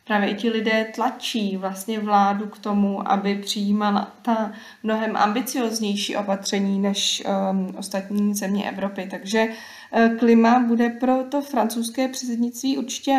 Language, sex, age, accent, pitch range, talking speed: Czech, female, 20-39, native, 210-230 Hz, 125 wpm